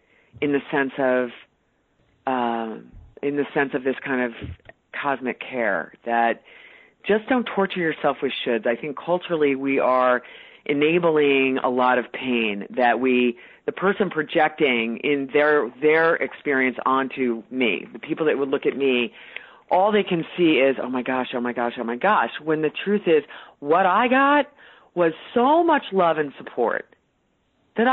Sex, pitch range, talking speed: female, 130-175 Hz, 165 wpm